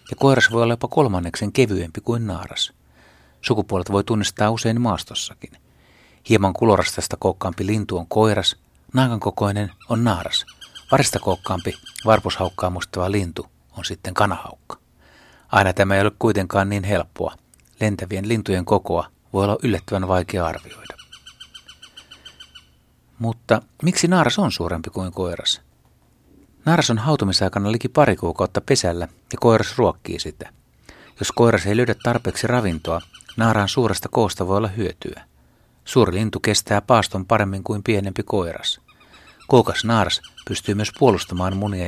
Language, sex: Finnish, male